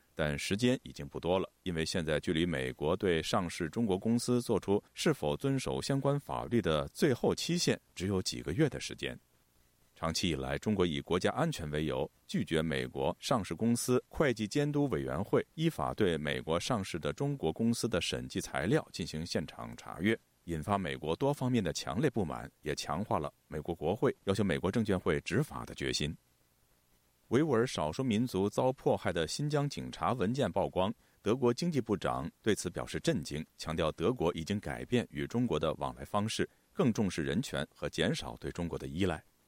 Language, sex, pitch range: Chinese, male, 70-120 Hz